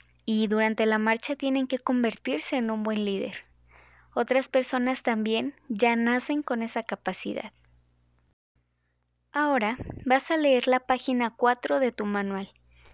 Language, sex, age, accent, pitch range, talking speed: Spanish, female, 20-39, Mexican, 215-260 Hz, 135 wpm